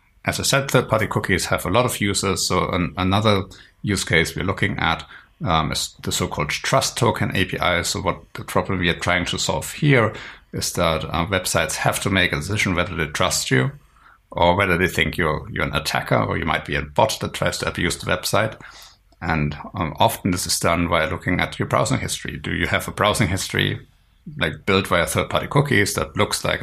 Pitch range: 85-110 Hz